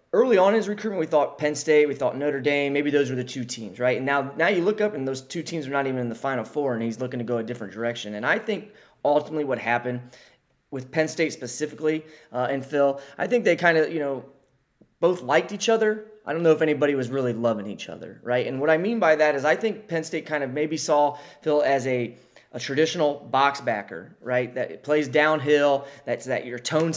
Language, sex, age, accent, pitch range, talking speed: English, male, 20-39, American, 130-155 Hz, 245 wpm